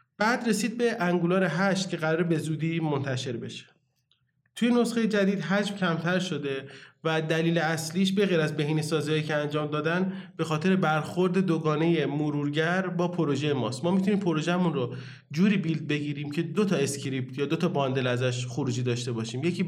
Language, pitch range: Persian, 145-185 Hz